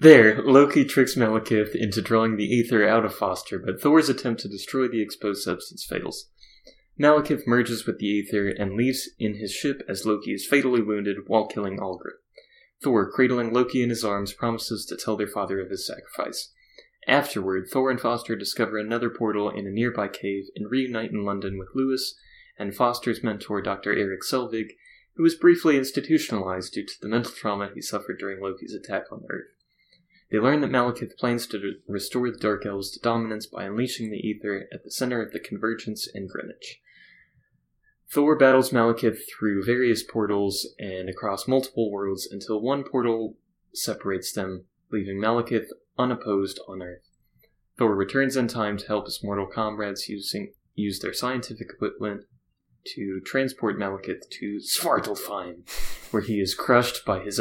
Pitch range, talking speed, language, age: 100-125 Hz, 165 wpm, English, 20-39